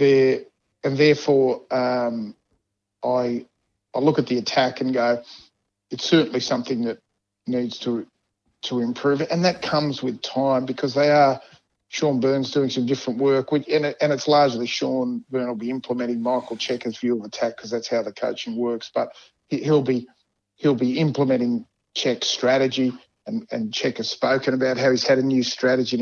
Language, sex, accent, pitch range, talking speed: English, male, Australian, 120-140 Hz, 180 wpm